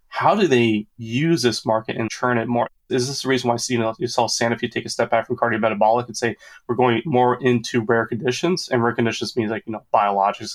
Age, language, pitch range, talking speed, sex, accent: 20-39, English, 115-130 Hz, 245 wpm, male, American